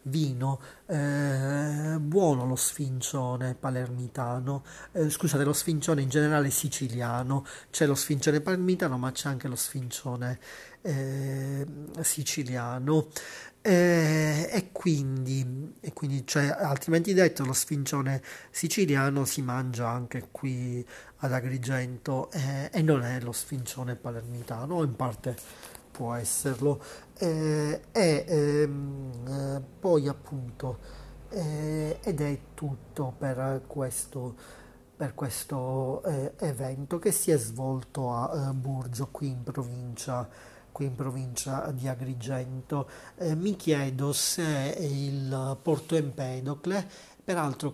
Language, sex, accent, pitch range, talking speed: Italian, male, native, 130-150 Hz, 110 wpm